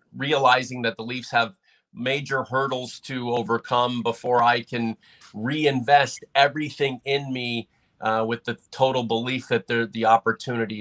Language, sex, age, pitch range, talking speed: English, male, 40-59, 115-140 Hz, 135 wpm